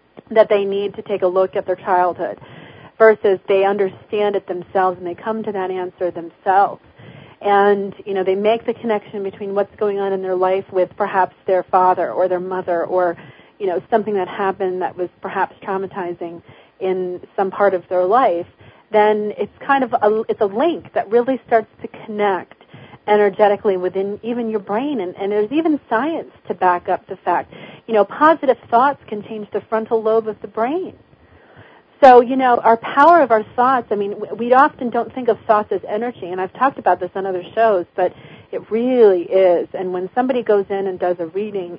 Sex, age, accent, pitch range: female, 40-59, American, 185-225 Hz